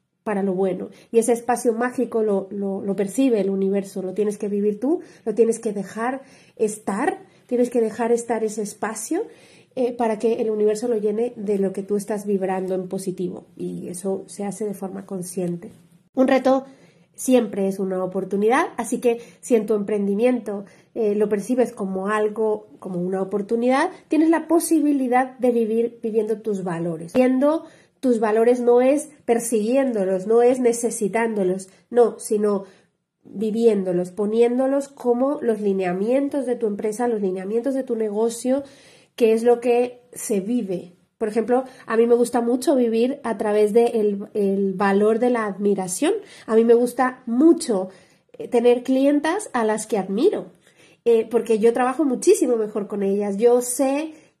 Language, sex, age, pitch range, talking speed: Spanish, female, 30-49, 200-245 Hz, 160 wpm